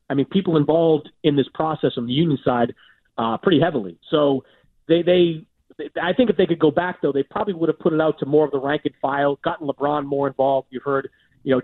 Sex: male